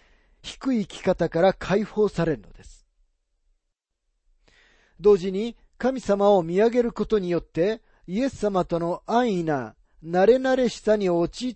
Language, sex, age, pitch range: Japanese, male, 40-59, 150-215 Hz